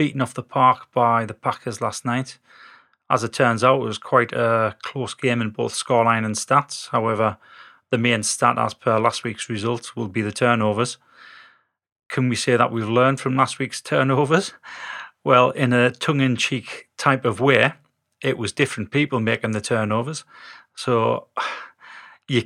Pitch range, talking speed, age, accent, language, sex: 110-130 Hz, 170 wpm, 30-49, British, English, male